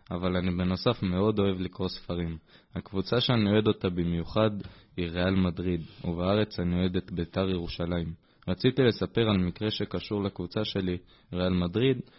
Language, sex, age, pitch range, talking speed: Hebrew, male, 20-39, 90-105 Hz, 150 wpm